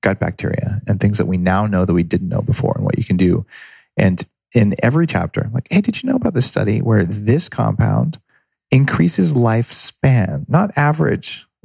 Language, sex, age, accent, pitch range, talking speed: English, male, 40-59, American, 100-145 Hz, 190 wpm